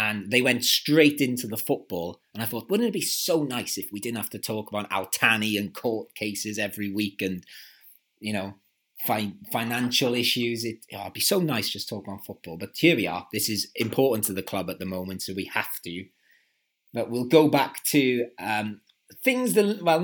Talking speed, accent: 210 wpm, British